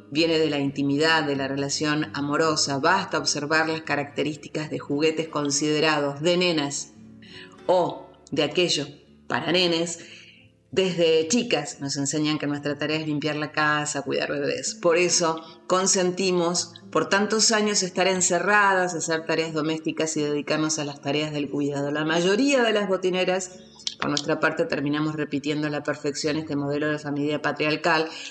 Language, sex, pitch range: Spanish, female, 145-165 Hz